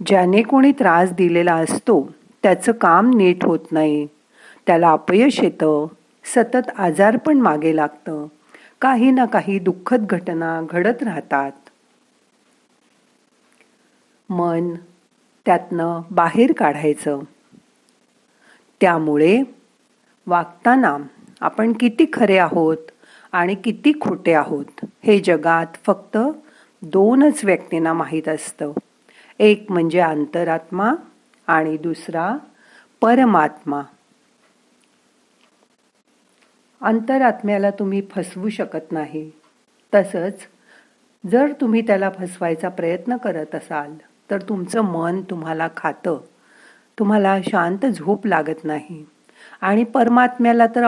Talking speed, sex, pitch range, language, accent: 90 wpm, female, 165-235 Hz, Marathi, native